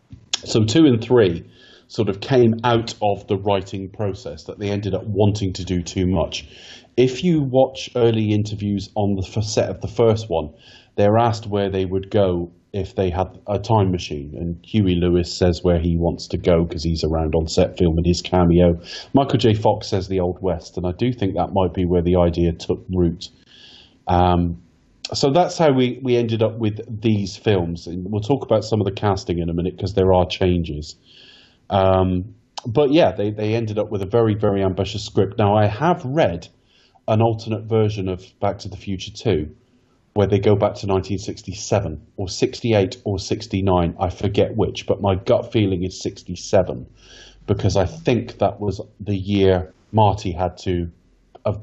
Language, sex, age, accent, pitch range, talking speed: English, male, 30-49, British, 90-110 Hz, 190 wpm